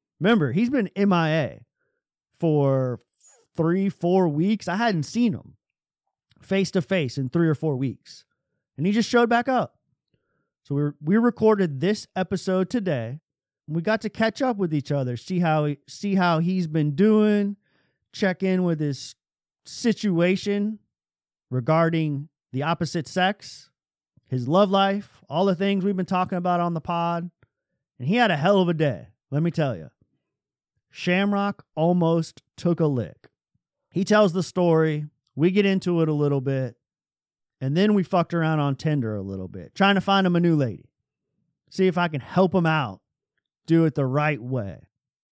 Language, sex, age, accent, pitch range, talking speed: English, male, 30-49, American, 135-185 Hz, 165 wpm